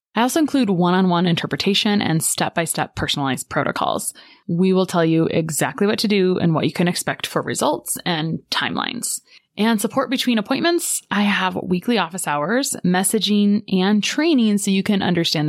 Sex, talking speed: female, 165 wpm